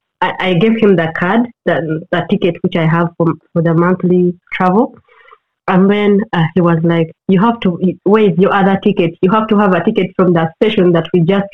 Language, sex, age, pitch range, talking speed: English, female, 20-39, 175-215 Hz, 220 wpm